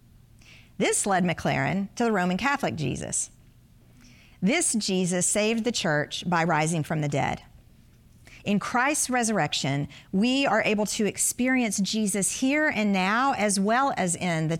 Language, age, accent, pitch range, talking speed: English, 50-69, American, 165-220 Hz, 145 wpm